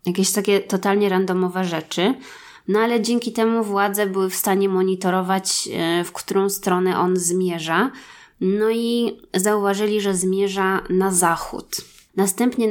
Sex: female